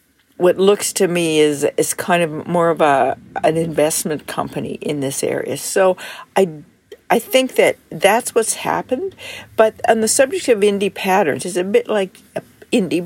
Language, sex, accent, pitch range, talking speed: English, female, American, 175-225 Hz, 170 wpm